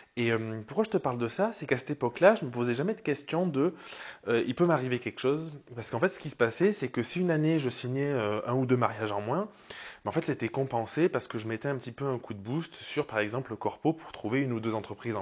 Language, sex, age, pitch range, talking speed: French, male, 20-39, 115-160 Hz, 290 wpm